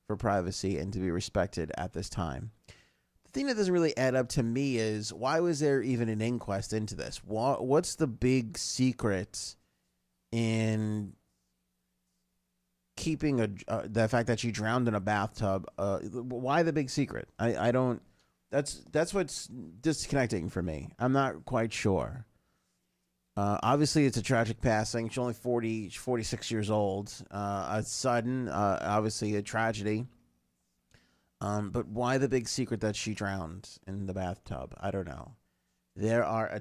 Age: 30-49